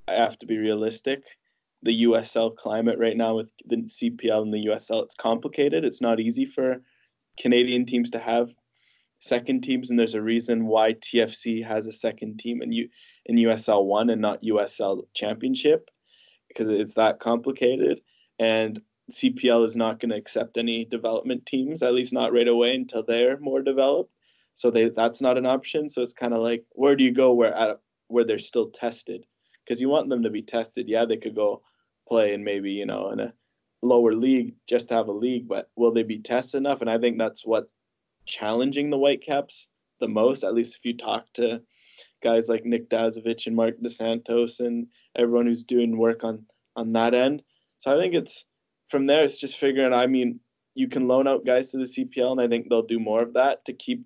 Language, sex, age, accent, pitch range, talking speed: English, male, 20-39, American, 115-130 Hz, 200 wpm